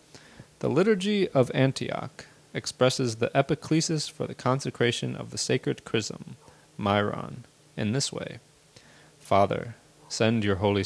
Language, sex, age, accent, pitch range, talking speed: English, male, 30-49, American, 110-145 Hz, 120 wpm